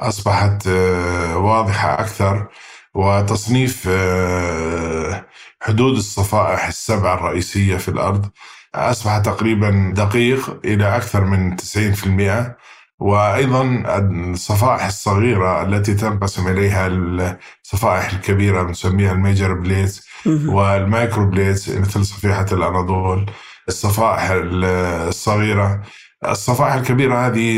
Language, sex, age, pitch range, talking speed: Arabic, male, 20-39, 95-110 Hz, 85 wpm